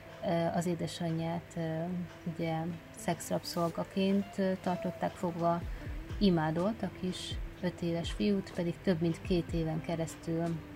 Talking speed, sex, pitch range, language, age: 100 wpm, female, 165-180 Hz, Hungarian, 20-39